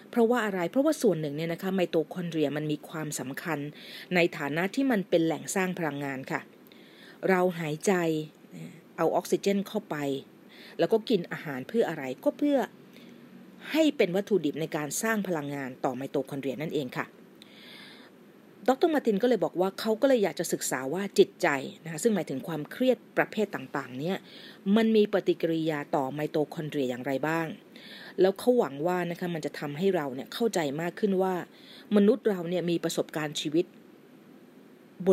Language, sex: Thai, female